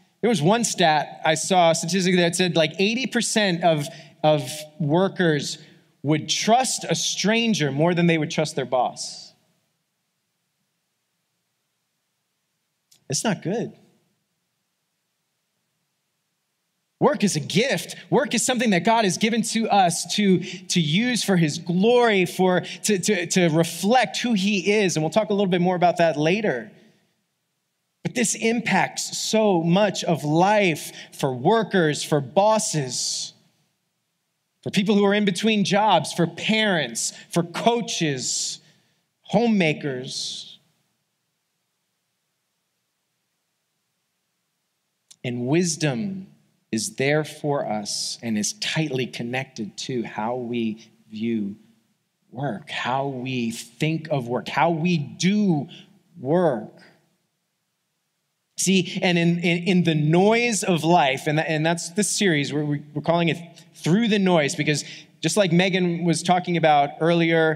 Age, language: 30-49, English